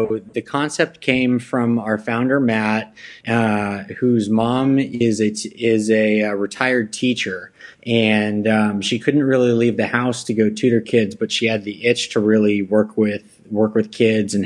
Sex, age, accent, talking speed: male, 20-39, American, 165 wpm